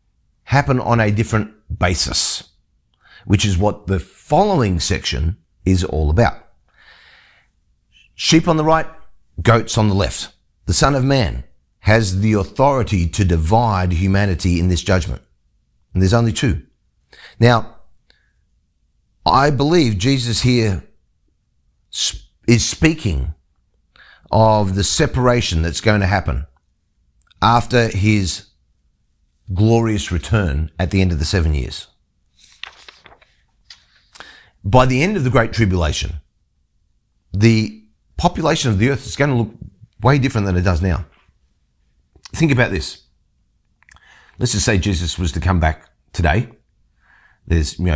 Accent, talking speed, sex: Australian, 125 wpm, male